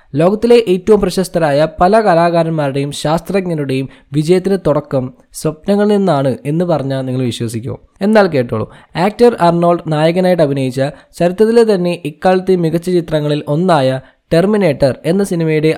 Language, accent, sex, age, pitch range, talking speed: Malayalam, native, male, 20-39, 135-180 Hz, 110 wpm